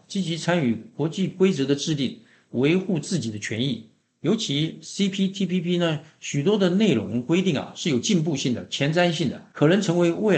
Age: 50-69